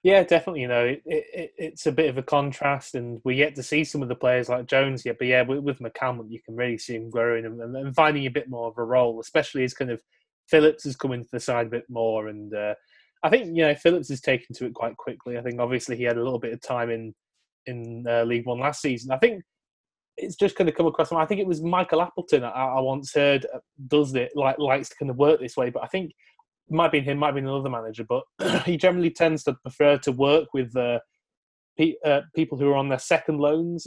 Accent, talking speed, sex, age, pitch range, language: British, 255 wpm, male, 20-39, 125-155 Hz, English